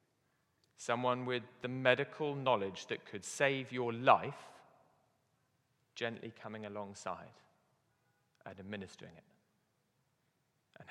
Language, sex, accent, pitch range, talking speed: English, male, British, 125-160 Hz, 95 wpm